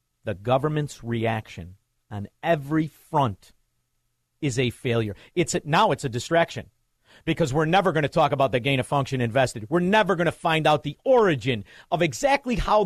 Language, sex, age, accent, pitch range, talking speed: English, male, 50-69, American, 110-160 Hz, 175 wpm